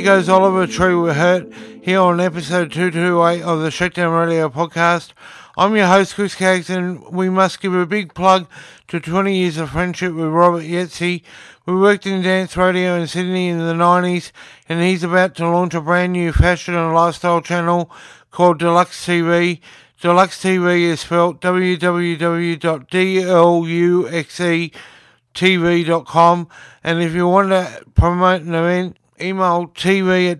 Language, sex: English, male